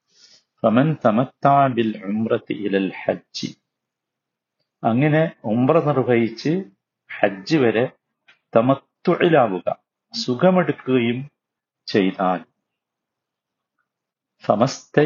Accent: native